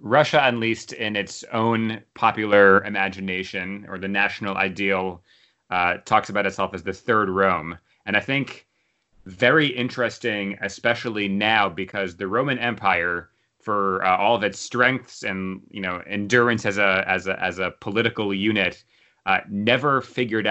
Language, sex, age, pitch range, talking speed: English, male, 30-49, 95-115 Hz, 150 wpm